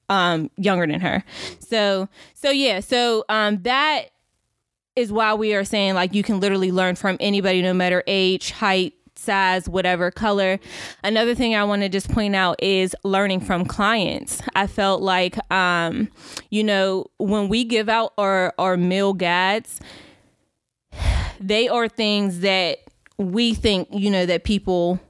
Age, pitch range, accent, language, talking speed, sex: 20-39, 185-215 Hz, American, English, 155 wpm, female